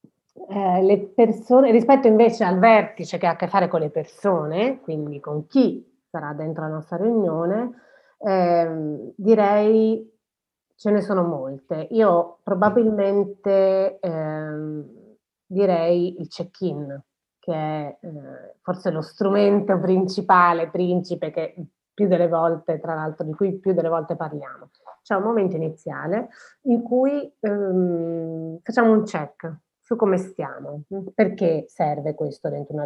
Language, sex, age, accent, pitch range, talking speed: Italian, female, 30-49, native, 155-200 Hz, 135 wpm